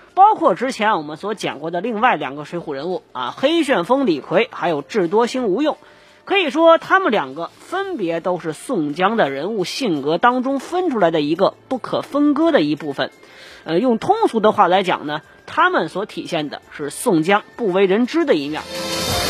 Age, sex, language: 20-39, female, Chinese